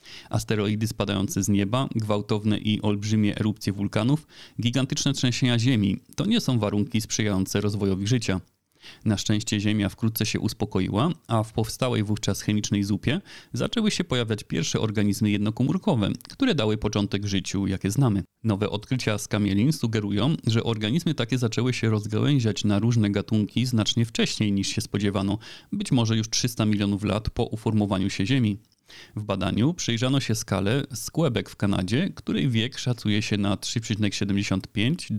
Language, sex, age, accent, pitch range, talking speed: Polish, male, 30-49, native, 100-125 Hz, 145 wpm